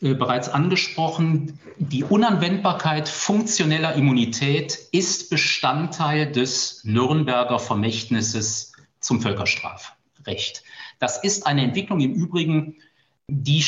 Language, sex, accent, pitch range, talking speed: German, male, German, 125-160 Hz, 90 wpm